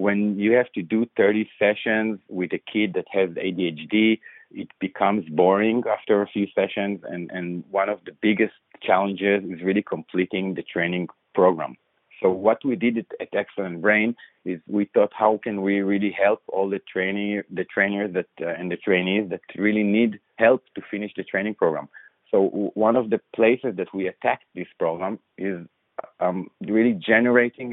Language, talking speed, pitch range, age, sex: English, 175 wpm, 95-105 Hz, 40-59, male